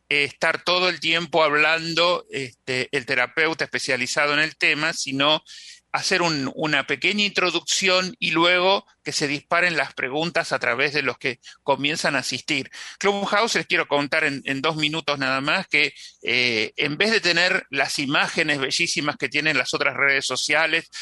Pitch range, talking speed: 140-180 Hz, 165 wpm